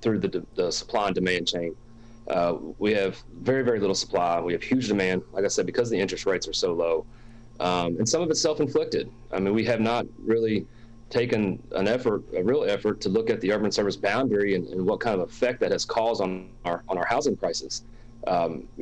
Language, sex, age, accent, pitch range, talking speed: English, male, 30-49, American, 100-120 Hz, 220 wpm